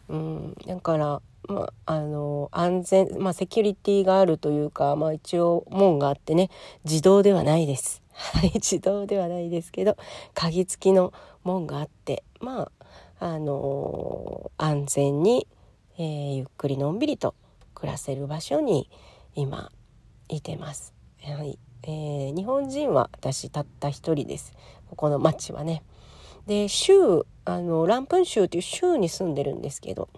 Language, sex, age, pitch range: Japanese, female, 40-59, 145-195 Hz